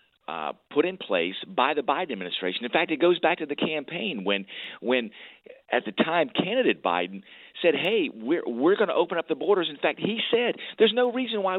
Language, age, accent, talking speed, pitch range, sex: English, 50-69, American, 205 wpm, 130-210 Hz, male